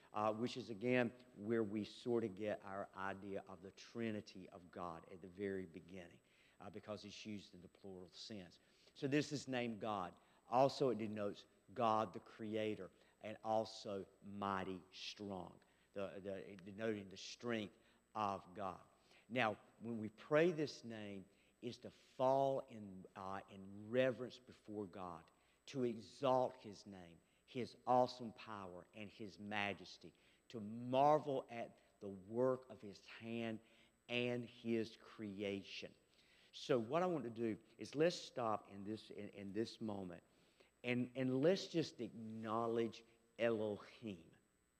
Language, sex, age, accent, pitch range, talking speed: English, male, 50-69, American, 100-120 Hz, 140 wpm